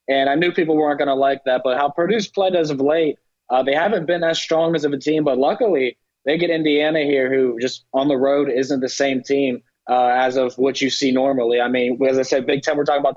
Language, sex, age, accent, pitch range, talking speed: English, male, 20-39, American, 125-145 Hz, 265 wpm